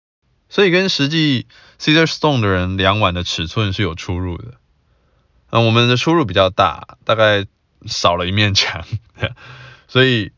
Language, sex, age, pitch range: Chinese, male, 20-39, 90-125 Hz